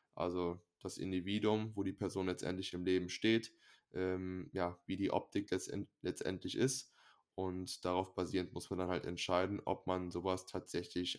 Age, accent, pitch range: 10-29, German, 90-105 Hz